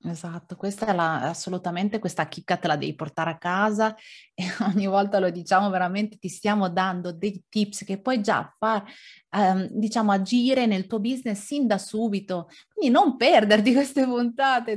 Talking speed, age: 170 wpm, 30-49